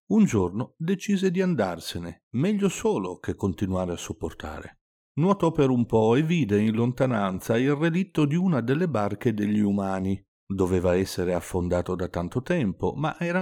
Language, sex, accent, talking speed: Italian, male, native, 155 wpm